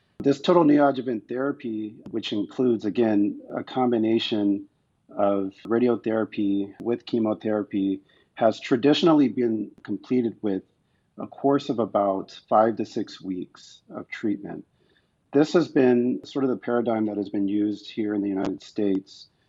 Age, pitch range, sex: 40-59, 100-120 Hz, male